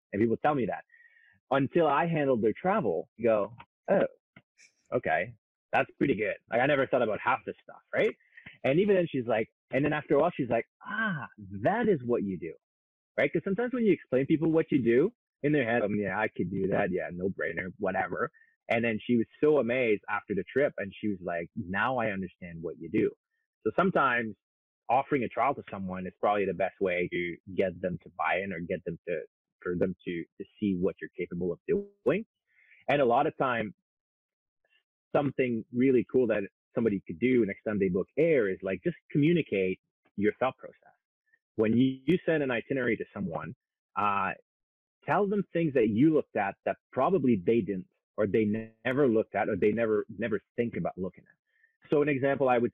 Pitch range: 105-170 Hz